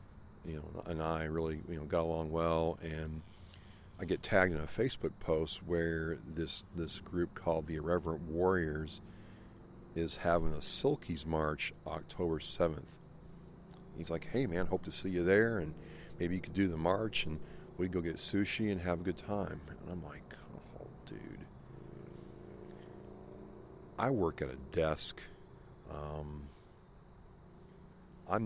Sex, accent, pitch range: male, American, 80-95 Hz